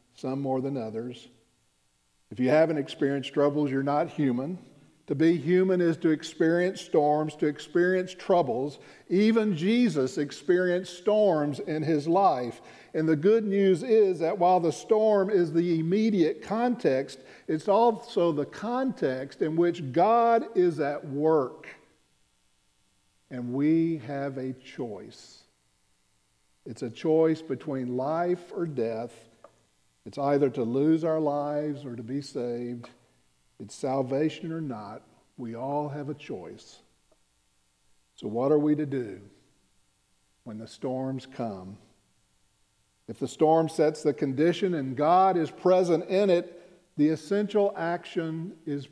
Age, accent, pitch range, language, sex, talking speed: 50-69, American, 125-180 Hz, English, male, 135 wpm